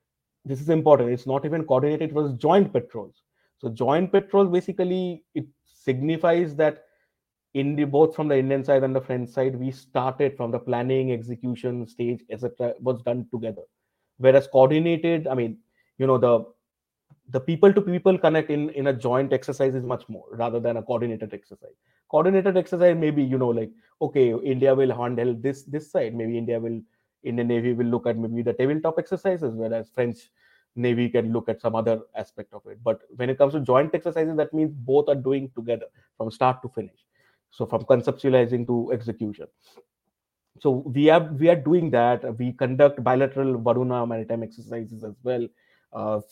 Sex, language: male, English